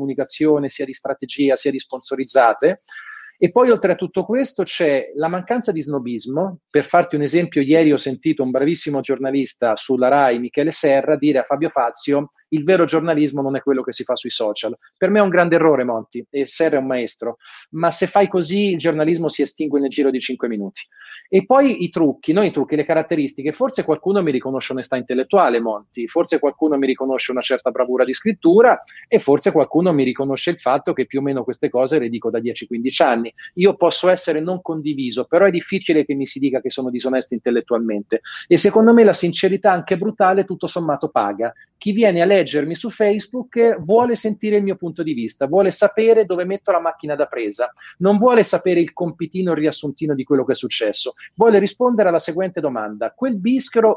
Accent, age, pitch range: native, 40-59, 135-190 Hz